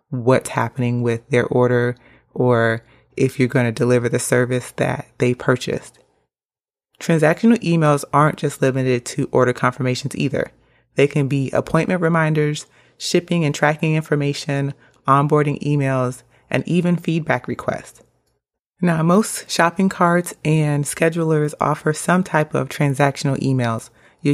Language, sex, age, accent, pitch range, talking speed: English, female, 30-49, American, 125-155 Hz, 130 wpm